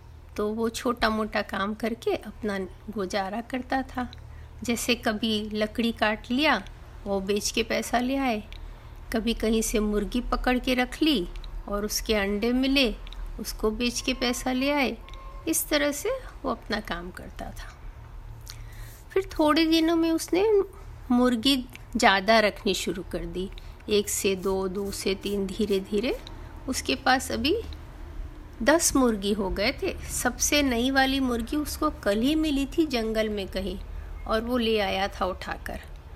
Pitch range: 195-290 Hz